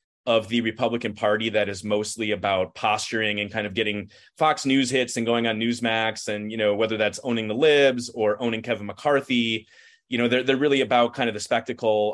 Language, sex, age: English, male, 30-49